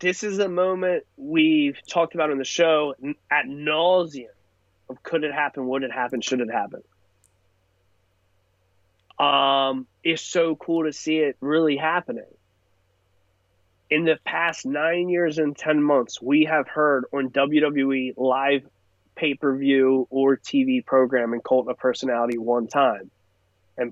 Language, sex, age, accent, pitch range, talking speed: English, male, 20-39, American, 95-160 Hz, 140 wpm